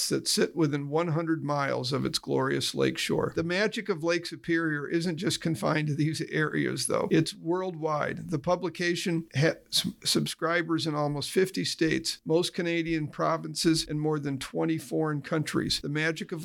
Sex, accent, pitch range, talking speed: male, American, 145-170 Hz, 160 wpm